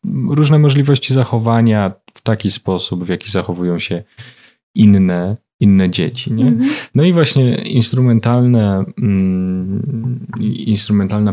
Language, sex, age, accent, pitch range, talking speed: Polish, male, 20-39, native, 95-115 Hz, 105 wpm